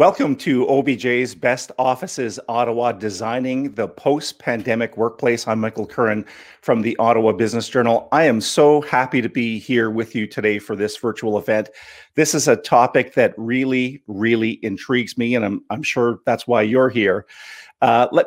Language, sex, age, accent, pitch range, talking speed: English, male, 40-59, American, 115-145 Hz, 170 wpm